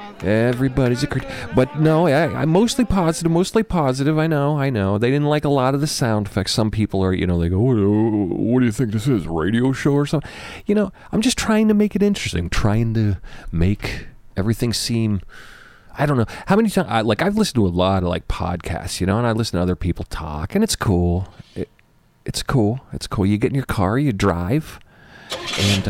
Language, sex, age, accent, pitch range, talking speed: English, male, 40-59, American, 90-145 Hz, 225 wpm